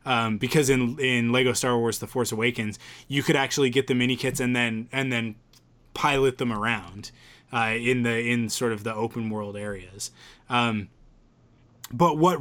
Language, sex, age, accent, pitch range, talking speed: English, male, 20-39, American, 115-140 Hz, 180 wpm